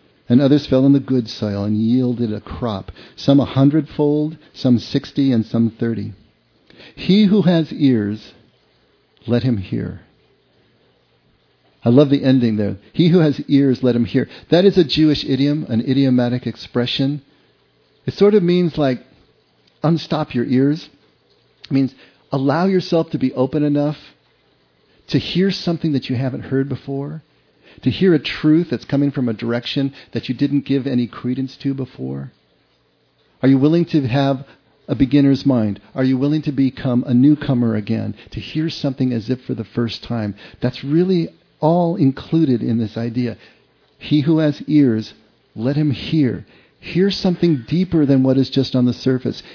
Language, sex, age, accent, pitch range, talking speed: English, male, 50-69, American, 120-150 Hz, 165 wpm